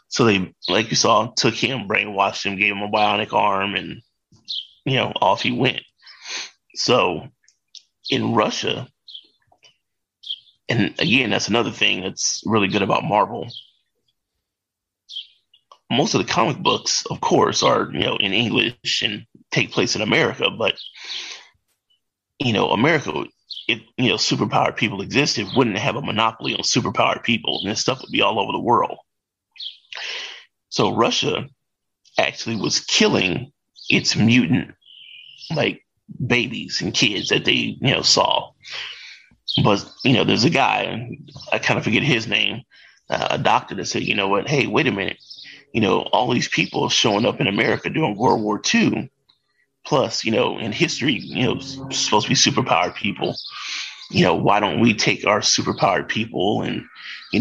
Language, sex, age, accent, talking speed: English, male, 20-39, American, 160 wpm